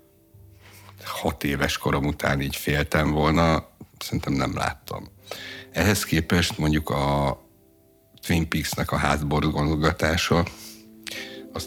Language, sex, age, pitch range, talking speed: Hungarian, male, 60-79, 75-85 Hz, 100 wpm